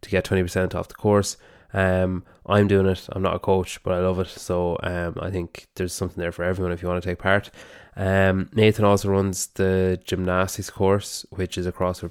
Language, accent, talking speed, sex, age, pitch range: English, Irish, 220 wpm, male, 20-39, 90-95 Hz